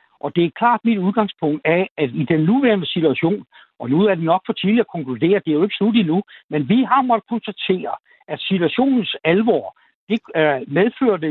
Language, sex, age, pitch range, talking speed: Danish, male, 60-79, 165-230 Hz, 200 wpm